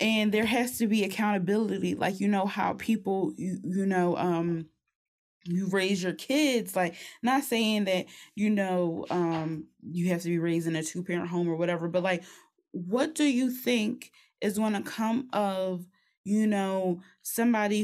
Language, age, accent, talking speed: English, 20-39, American, 175 wpm